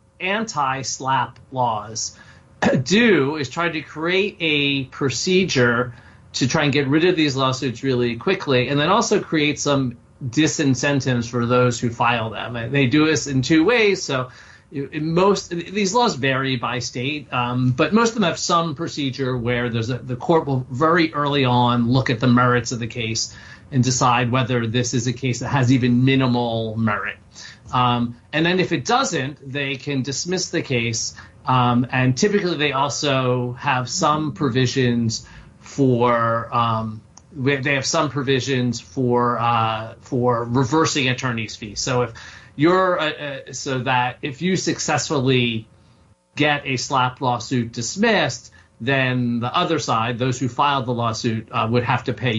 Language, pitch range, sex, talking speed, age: English, 120-150 Hz, male, 160 wpm, 30-49